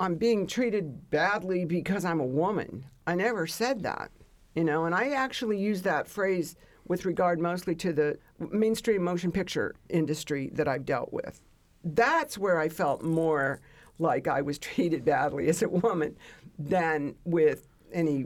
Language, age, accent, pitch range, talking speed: English, 60-79, American, 150-200 Hz, 160 wpm